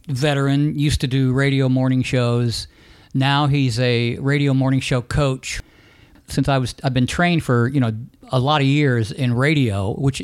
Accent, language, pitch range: American, English, 115-150 Hz